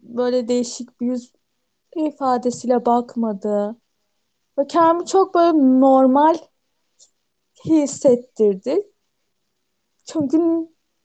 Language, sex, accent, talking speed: Turkish, female, native, 70 wpm